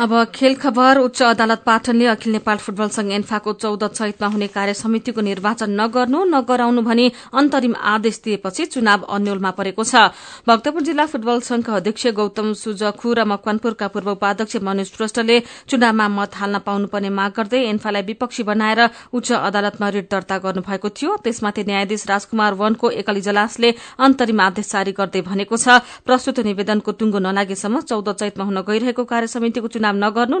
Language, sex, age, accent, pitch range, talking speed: German, female, 40-59, Indian, 200-240 Hz, 75 wpm